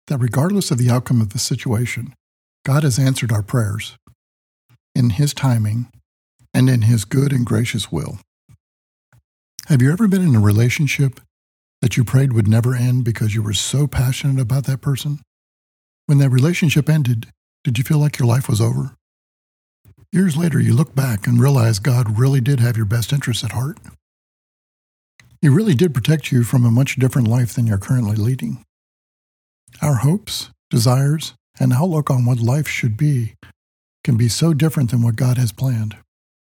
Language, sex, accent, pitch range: English, male, American, 115-140 Hz